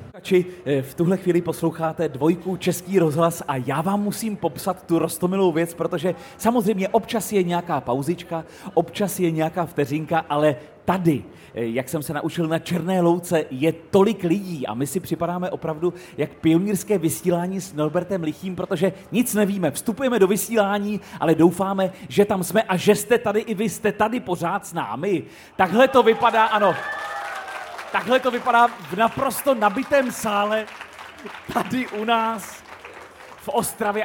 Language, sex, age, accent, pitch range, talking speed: Czech, male, 30-49, native, 160-205 Hz, 150 wpm